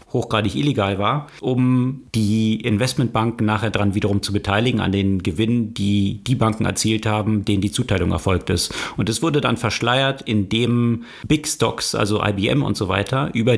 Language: German